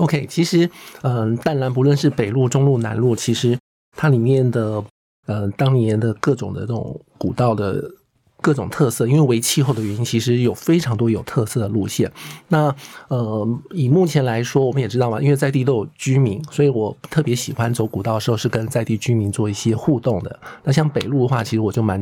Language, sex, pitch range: Chinese, male, 105-130 Hz